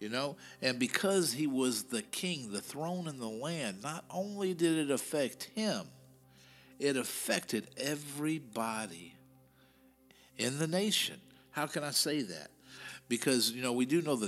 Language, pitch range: English, 110-160 Hz